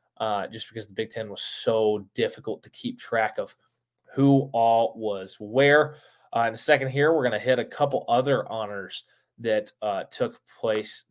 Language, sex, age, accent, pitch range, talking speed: English, male, 20-39, American, 120-165 Hz, 185 wpm